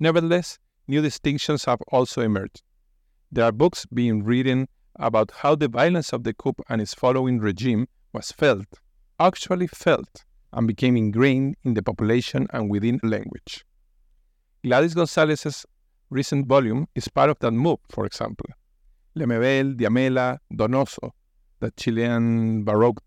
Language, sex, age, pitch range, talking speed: English, male, 50-69, 105-130 Hz, 135 wpm